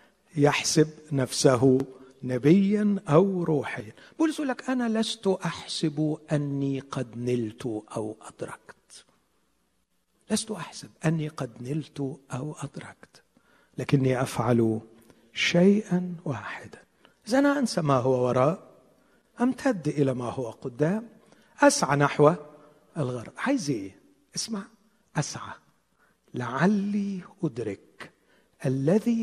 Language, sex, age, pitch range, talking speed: Arabic, male, 60-79, 130-195 Hz, 95 wpm